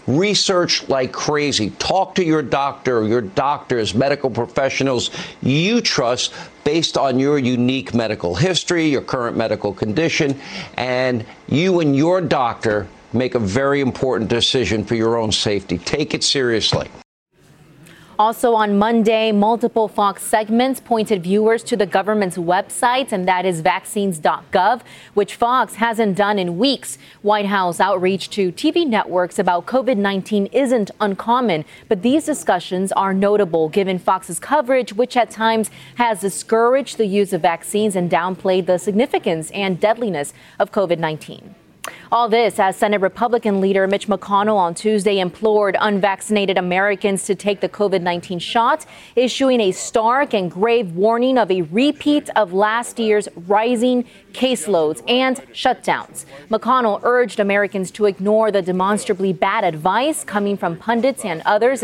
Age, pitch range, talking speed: 50-69, 165-220 Hz, 140 wpm